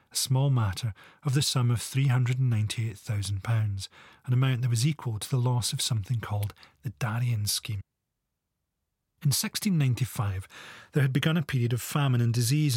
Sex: male